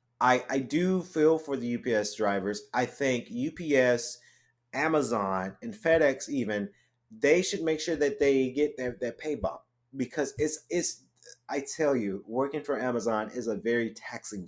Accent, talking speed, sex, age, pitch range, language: American, 160 wpm, male, 30-49, 115-145 Hz, English